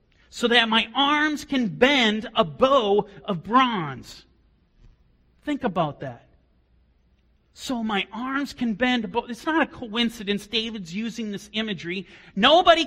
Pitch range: 155-245 Hz